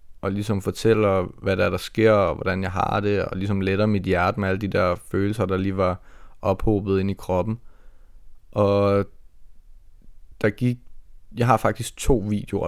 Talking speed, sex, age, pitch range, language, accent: 180 wpm, male, 20-39, 90-105 Hz, Danish, native